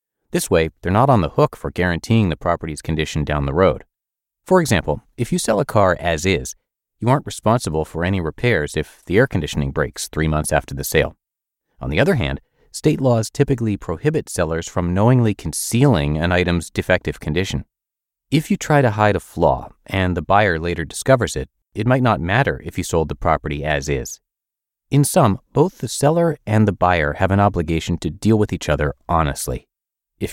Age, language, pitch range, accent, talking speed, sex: 30-49, English, 80-120 Hz, American, 195 wpm, male